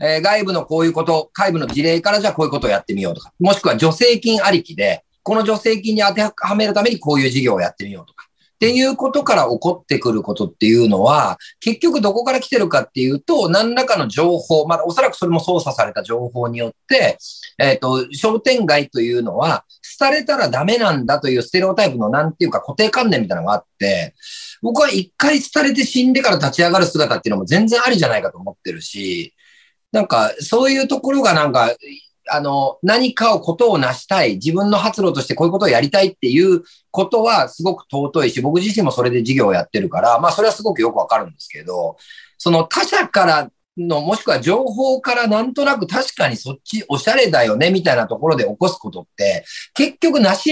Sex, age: male, 40-59